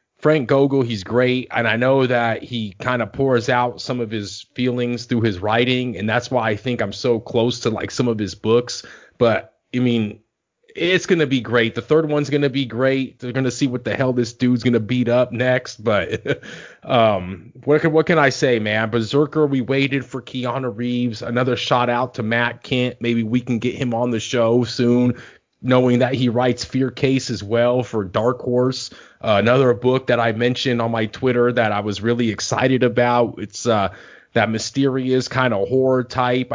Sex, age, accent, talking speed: male, 30-49, American, 210 wpm